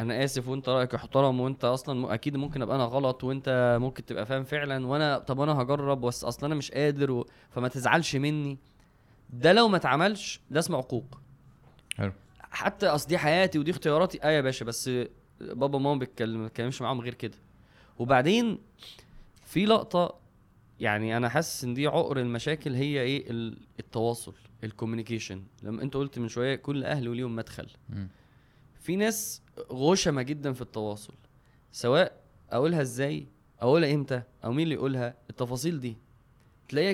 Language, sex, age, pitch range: Arabic, male, 20-39, 120-150 Hz